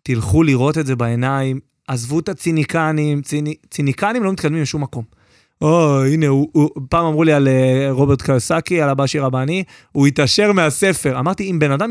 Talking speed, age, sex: 170 wpm, 30-49, male